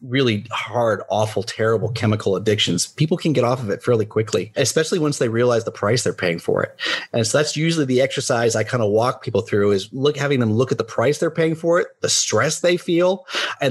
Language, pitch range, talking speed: English, 120-160 Hz, 230 wpm